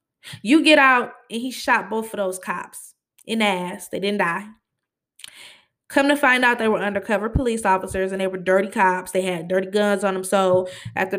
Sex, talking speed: female, 205 wpm